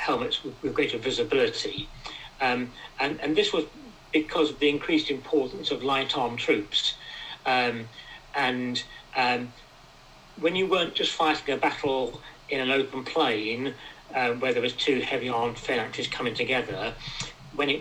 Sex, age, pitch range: male, 40-59, 125-170 Hz